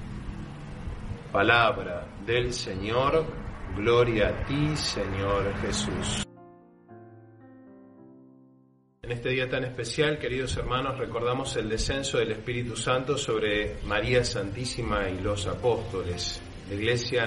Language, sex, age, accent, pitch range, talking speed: Spanish, male, 40-59, Argentinian, 100-125 Hz, 100 wpm